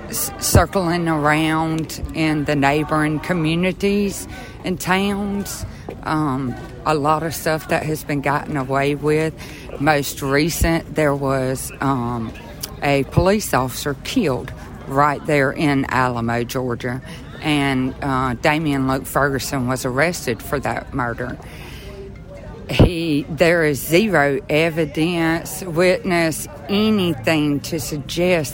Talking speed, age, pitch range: 110 wpm, 50-69, 135-165 Hz